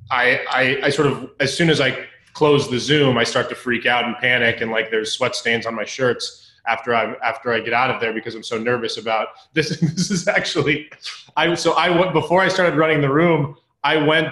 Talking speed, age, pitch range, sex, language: 235 wpm, 20-39, 130-160 Hz, male, English